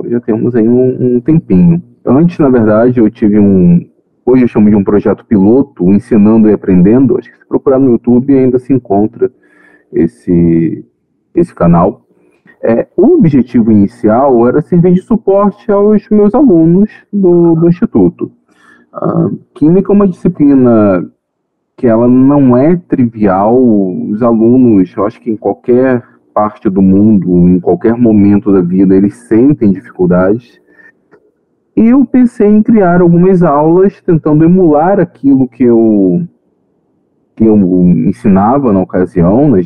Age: 40-59